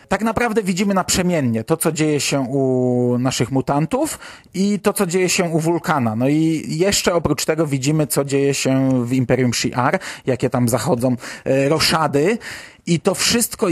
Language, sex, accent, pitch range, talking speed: Polish, male, native, 130-165 Hz, 160 wpm